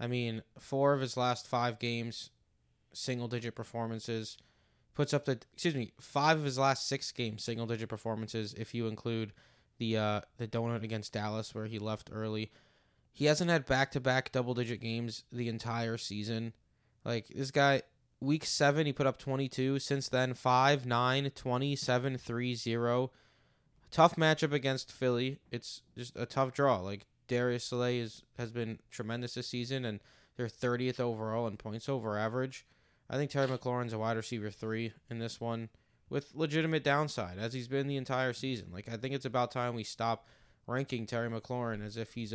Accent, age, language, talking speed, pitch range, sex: American, 20-39, English, 165 wpm, 115-130 Hz, male